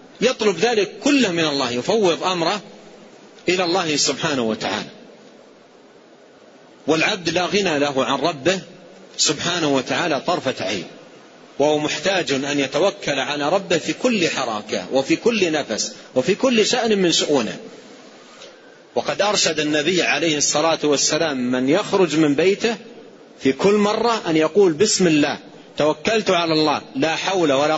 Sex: male